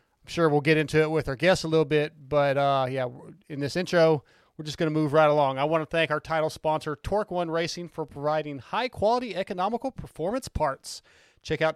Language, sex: English, male